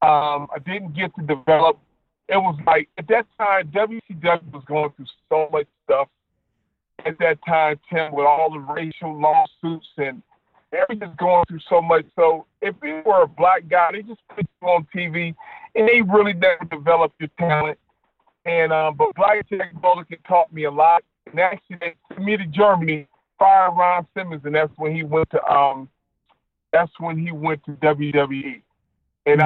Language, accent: English, American